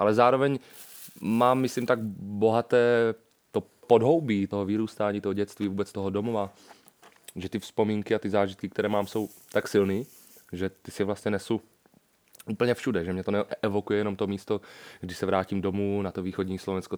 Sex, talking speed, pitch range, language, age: male, 170 wpm, 95-105 Hz, Czech, 30-49